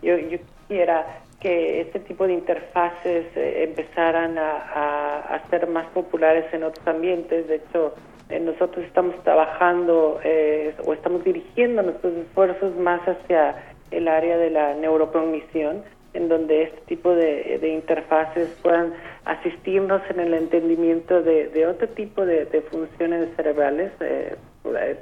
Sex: male